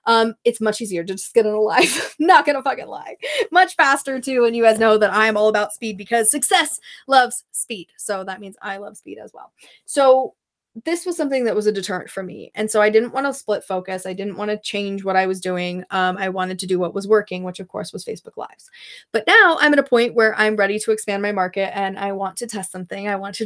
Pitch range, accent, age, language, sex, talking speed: 195-250 Hz, American, 20-39, English, female, 260 wpm